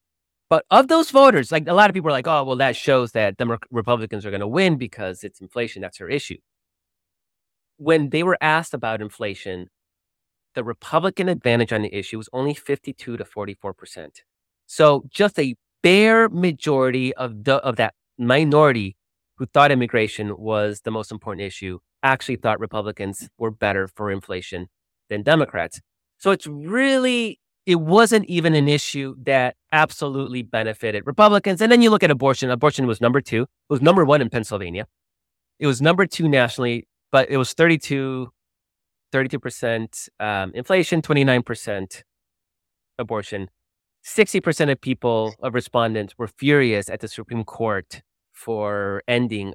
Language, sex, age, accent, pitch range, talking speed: English, male, 30-49, American, 100-145 Hz, 155 wpm